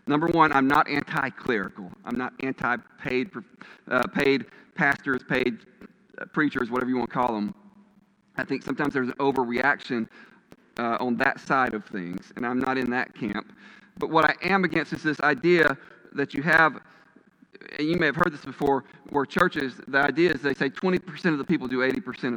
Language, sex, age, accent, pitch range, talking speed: English, male, 40-59, American, 125-175 Hz, 180 wpm